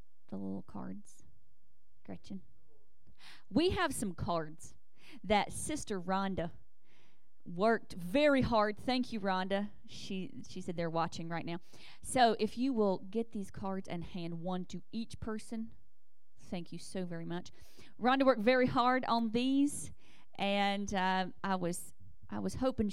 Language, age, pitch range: English, 40-59, 175-235 Hz